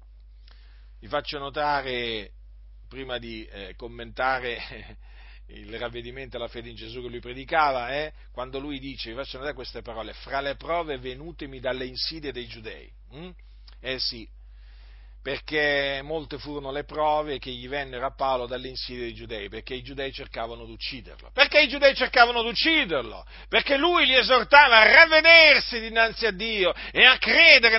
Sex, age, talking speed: male, 40-59, 155 wpm